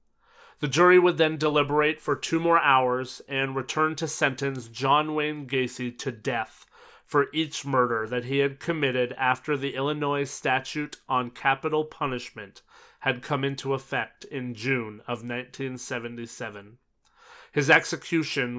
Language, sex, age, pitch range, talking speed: English, male, 30-49, 125-150 Hz, 135 wpm